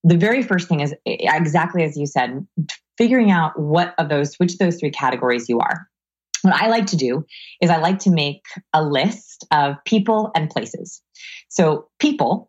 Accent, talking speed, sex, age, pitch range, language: American, 185 wpm, female, 20-39, 150-185 Hz, English